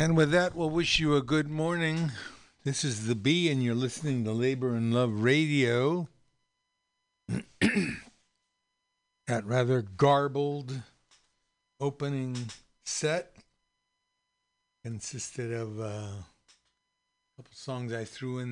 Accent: American